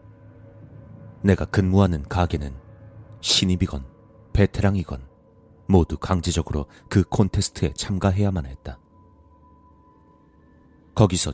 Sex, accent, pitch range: male, native, 80-100 Hz